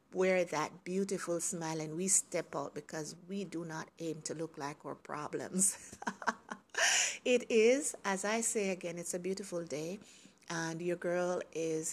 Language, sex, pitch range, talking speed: English, female, 170-225 Hz, 160 wpm